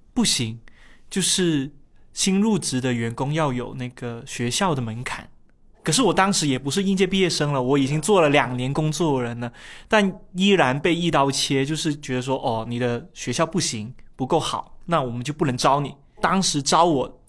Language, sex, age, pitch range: Chinese, male, 20-39, 125-150 Hz